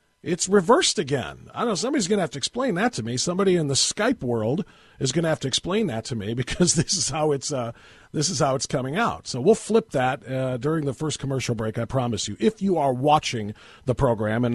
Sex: male